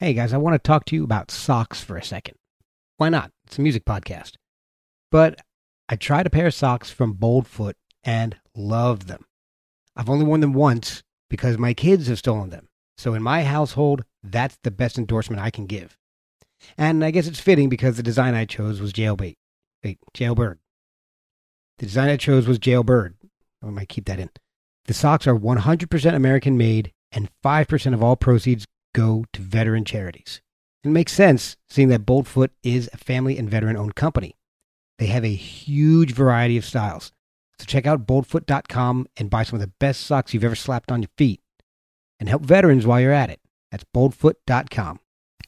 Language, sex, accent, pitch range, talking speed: English, male, American, 110-145 Hz, 180 wpm